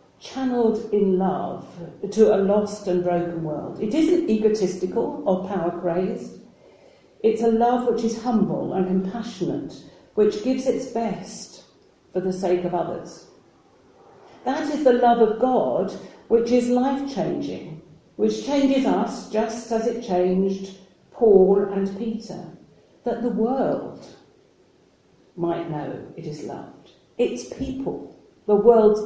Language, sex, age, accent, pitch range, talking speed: English, female, 50-69, British, 180-235 Hz, 130 wpm